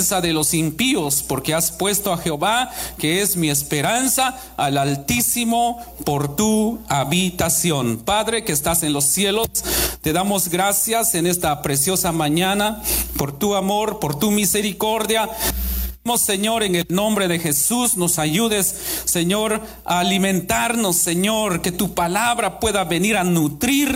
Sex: male